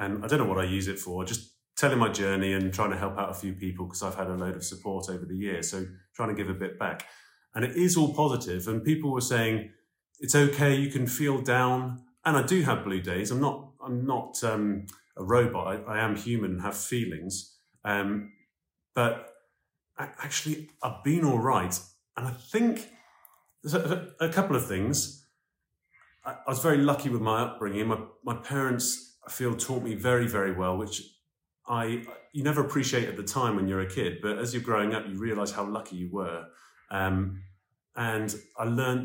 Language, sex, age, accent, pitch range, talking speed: English, male, 30-49, British, 100-130 Hz, 205 wpm